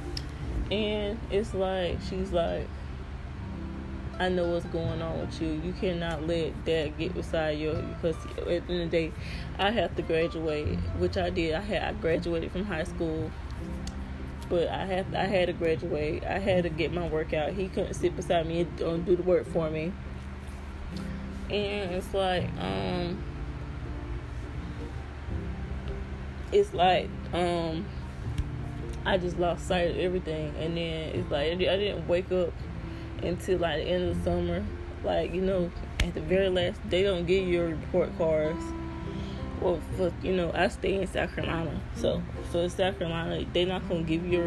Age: 20-39